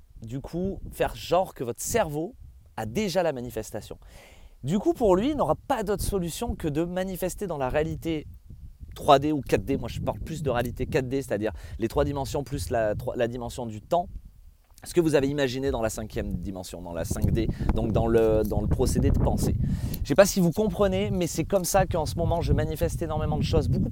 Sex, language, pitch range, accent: male, French, 115-175 Hz, French